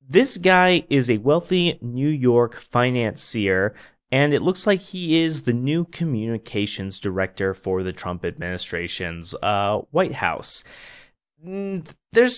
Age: 30-49